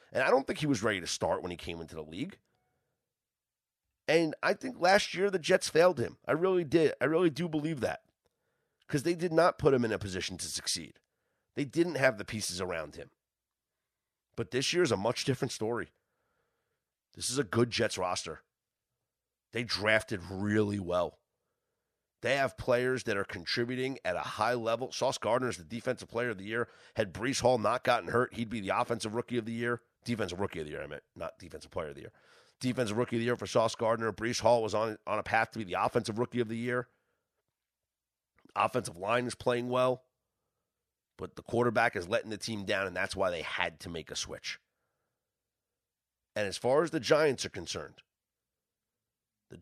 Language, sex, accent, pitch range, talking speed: English, male, American, 110-130 Hz, 205 wpm